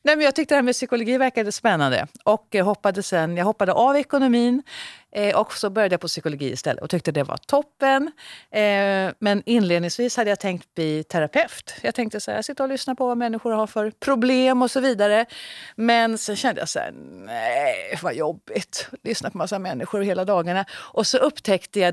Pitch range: 160-235 Hz